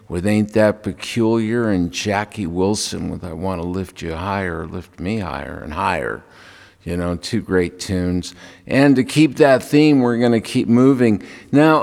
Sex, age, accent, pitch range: male, 50-69, American, 95-130 Hz